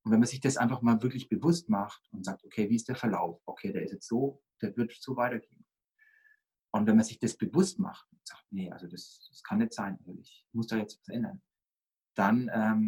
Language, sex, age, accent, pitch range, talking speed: German, male, 40-59, German, 120-195 Hz, 230 wpm